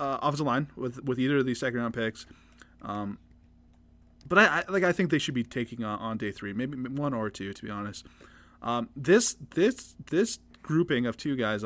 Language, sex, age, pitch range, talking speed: English, male, 20-39, 110-145 Hz, 205 wpm